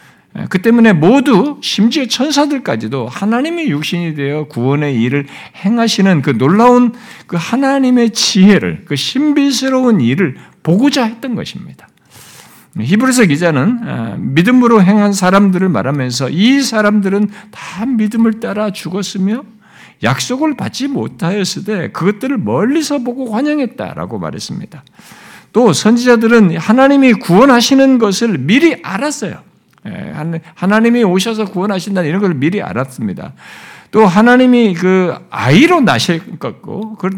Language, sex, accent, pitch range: Korean, male, native, 170-240 Hz